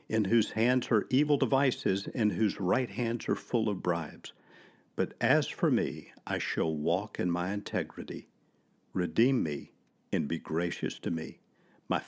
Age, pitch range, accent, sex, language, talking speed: 50-69, 90-120 Hz, American, male, English, 160 wpm